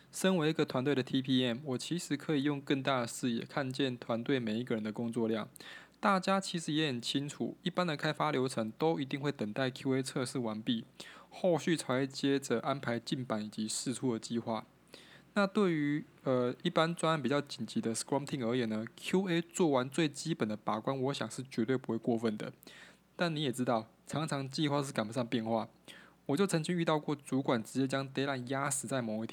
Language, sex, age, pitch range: English, male, 20-39, 120-150 Hz